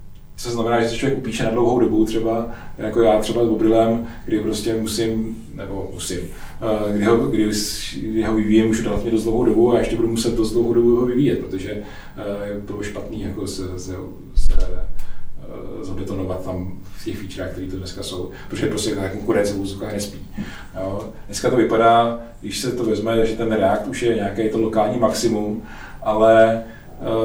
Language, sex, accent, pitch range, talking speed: Czech, male, native, 100-115 Hz, 170 wpm